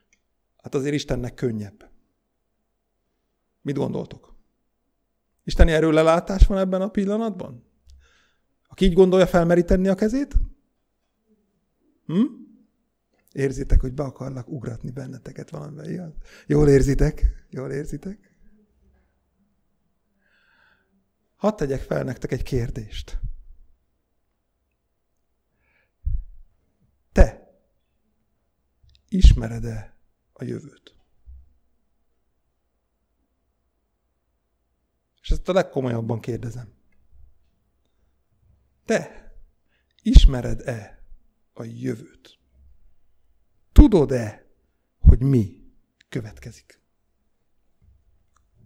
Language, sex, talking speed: Hungarian, male, 65 wpm